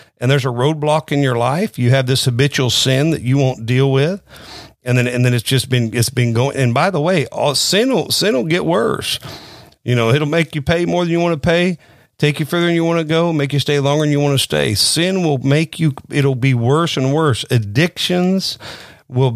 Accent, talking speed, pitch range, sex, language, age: American, 240 wpm, 130-160 Hz, male, English, 50-69